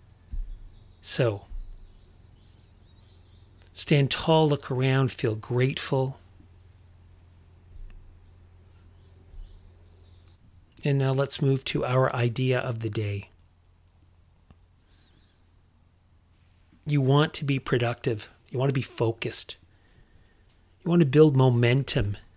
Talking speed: 85 wpm